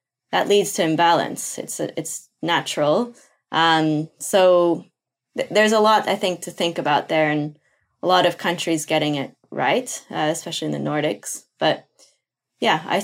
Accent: American